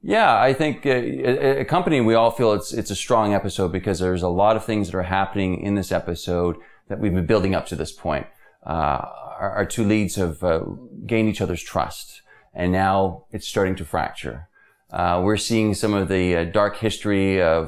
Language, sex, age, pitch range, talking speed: English, male, 30-49, 90-105 Hz, 210 wpm